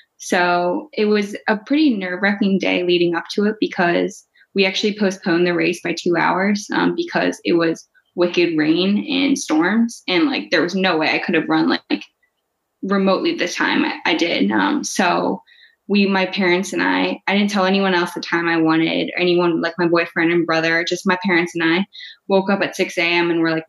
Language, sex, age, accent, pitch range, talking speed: English, female, 10-29, American, 170-205 Hz, 205 wpm